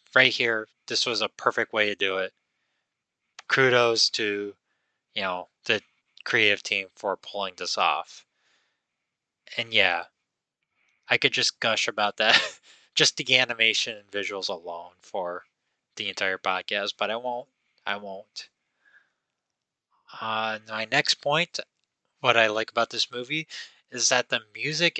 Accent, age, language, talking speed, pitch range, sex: American, 20-39, English, 140 wpm, 110-135 Hz, male